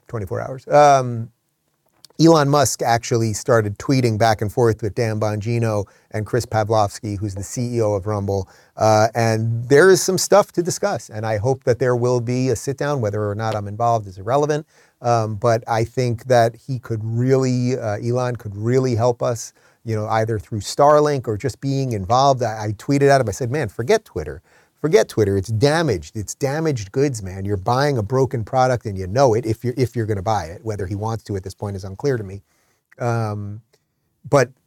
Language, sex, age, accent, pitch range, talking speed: English, male, 30-49, American, 105-130 Hz, 205 wpm